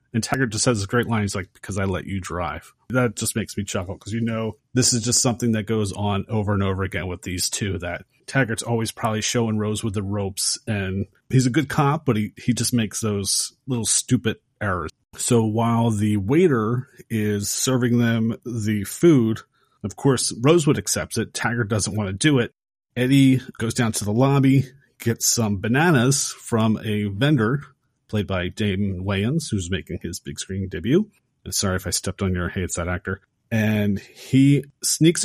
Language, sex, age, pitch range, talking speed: English, male, 30-49, 105-130 Hz, 195 wpm